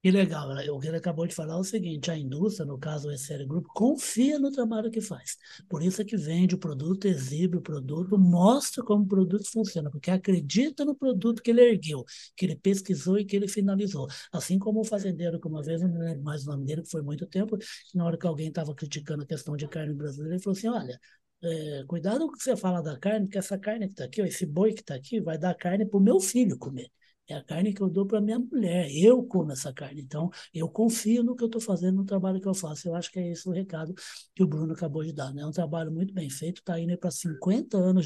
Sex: male